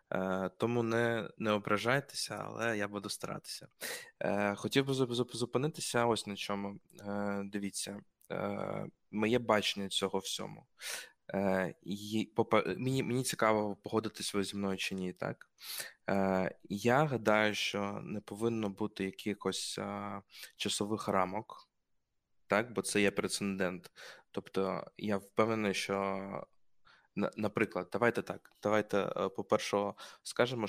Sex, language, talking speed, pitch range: male, Ukrainian, 105 wpm, 100-110 Hz